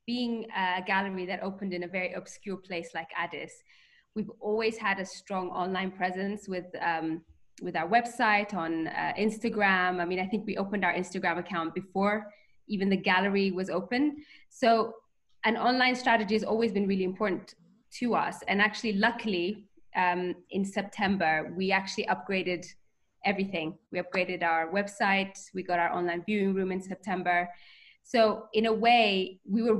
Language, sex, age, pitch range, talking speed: English, female, 20-39, 180-215 Hz, 165 wpm